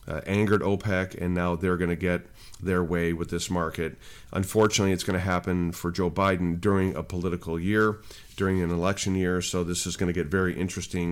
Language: English